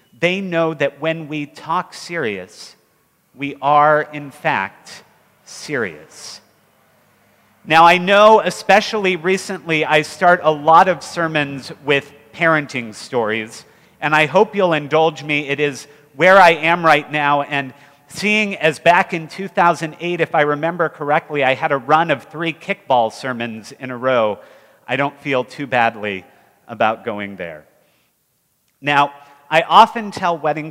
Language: English